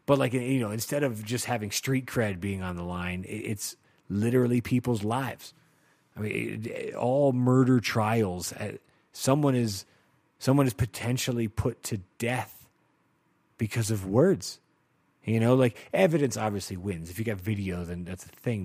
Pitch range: 100-125 Hz